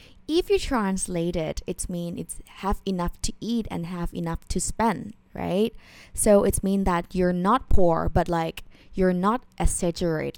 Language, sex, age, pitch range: Thai, female, 20-39, 165-210 Hz